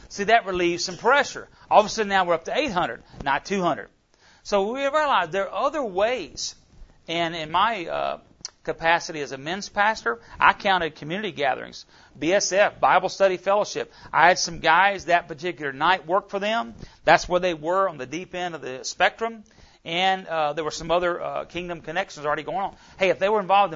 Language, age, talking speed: English, 40-59, 195 wpm